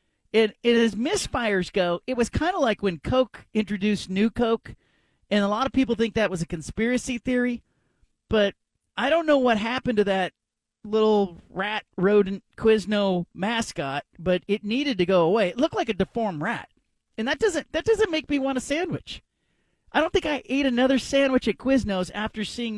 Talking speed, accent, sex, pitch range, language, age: 190 wpm, American, male, 185-240 Hz, English, 40-59